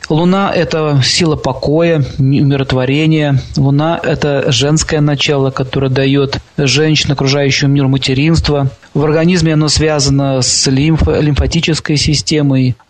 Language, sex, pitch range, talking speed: Russian, male, 135-165 Hz, 115 wpm